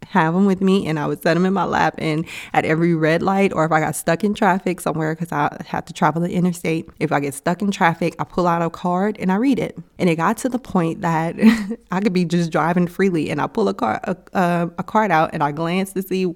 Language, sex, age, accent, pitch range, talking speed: English, female, 20-39, American, 165-200 Hz, 275 wpm